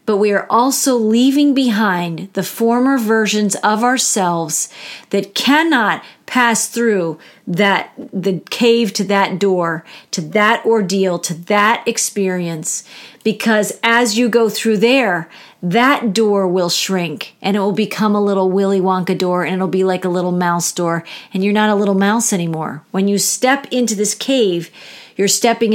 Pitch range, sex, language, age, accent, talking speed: 185-235 Hz, female, English, 40-59, American, 160 wpm